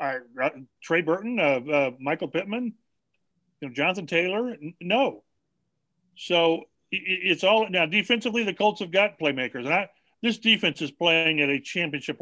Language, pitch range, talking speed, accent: English, 150-180 Hz, 160 wpm, American